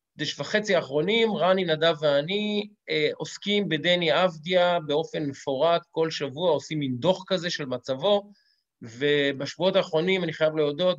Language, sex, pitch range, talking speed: Hebrew, male, 150-195 Hz, 135 wpm